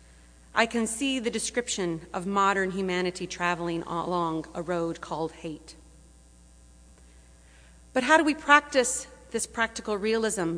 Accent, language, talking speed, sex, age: American, English, 125 wpm, female, 30-49